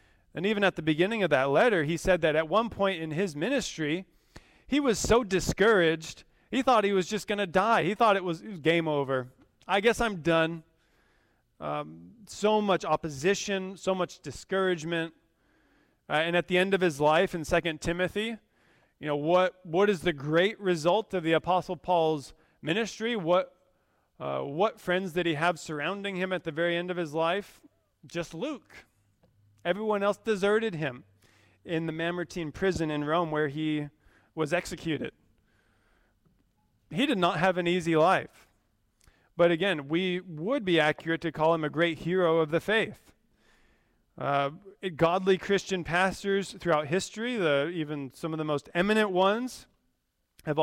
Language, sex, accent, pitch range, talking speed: English, male, American, 155-190 Hz, 165 wpm